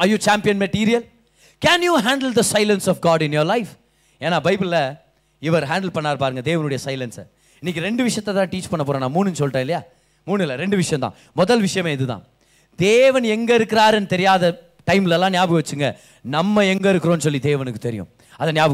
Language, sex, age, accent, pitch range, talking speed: Tamil, male, 30-49, native, 160-255 Hz, 170 wpm